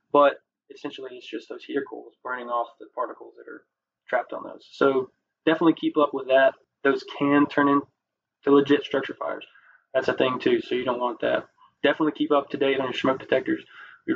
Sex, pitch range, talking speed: male, 125-150 Hz, 205 wpm